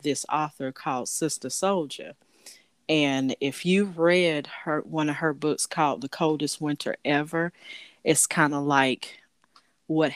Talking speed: 140 wpm